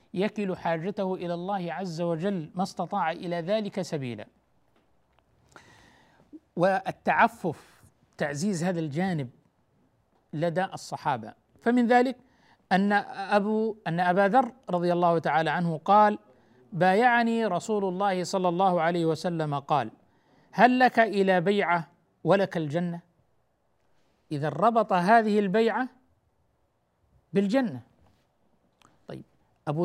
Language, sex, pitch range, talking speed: Arabic, male, 165-220 Hz, 100 wpm